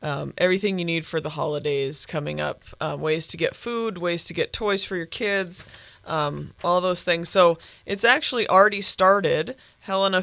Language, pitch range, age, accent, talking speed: English, 155-190 Hz, 30-49, American, 180 wpm